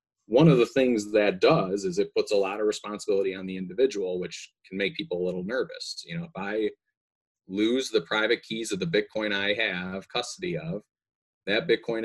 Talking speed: 200 wpm